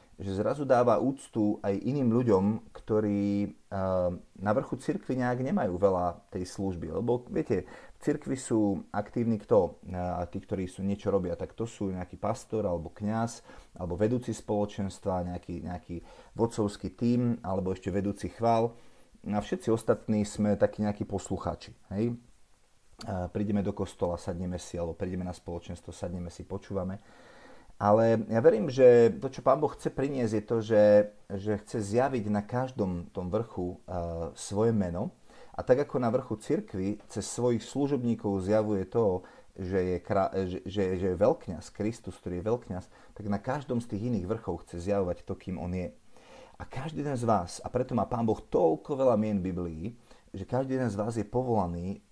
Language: Czech